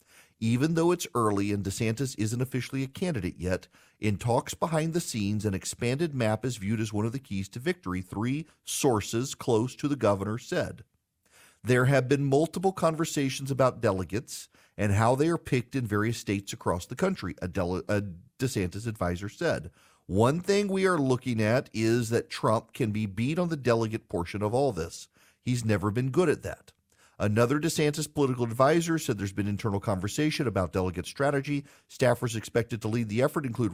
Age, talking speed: 40-59, 180 wpm